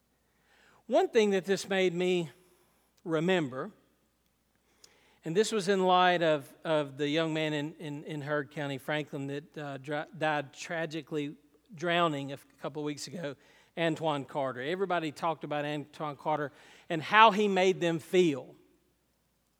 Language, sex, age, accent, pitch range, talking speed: English, male, 40-59, American, 150-190 Hz, 145 wpm